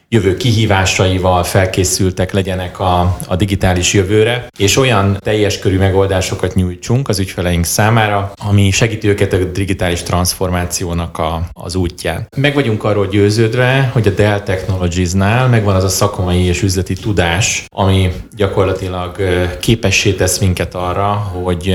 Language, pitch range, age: Hungarian, 90-105 Hz, 30-49